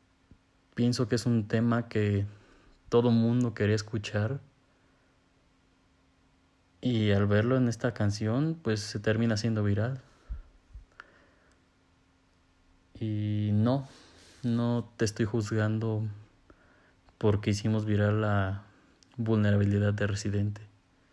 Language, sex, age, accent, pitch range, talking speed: Spanish, male, 20-39, Mexican, 90-115 Hz, 95 wpm